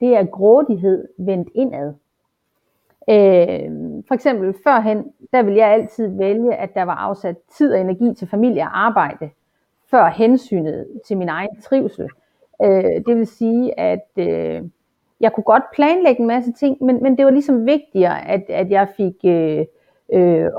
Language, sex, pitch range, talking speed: Danish, female, 190-250 Hz, 160 wpm